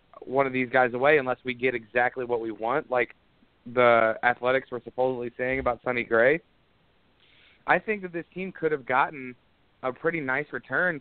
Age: 30-49